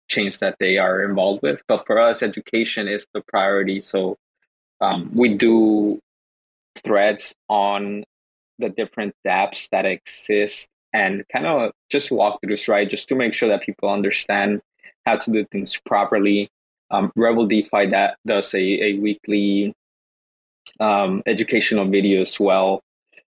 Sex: male